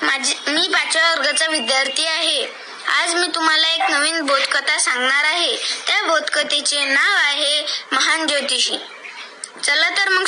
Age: 20-39